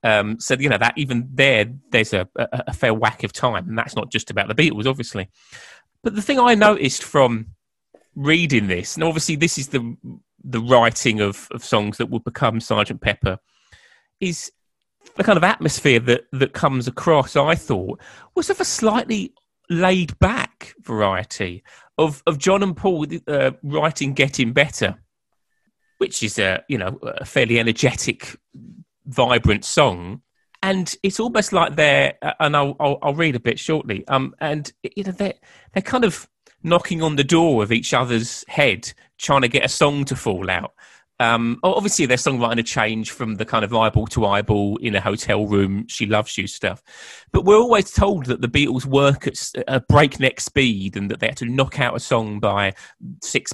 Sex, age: male, 30-49